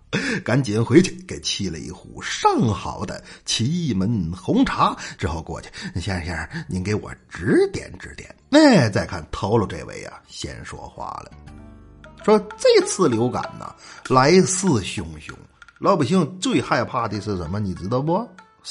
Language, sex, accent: Chinese, male, native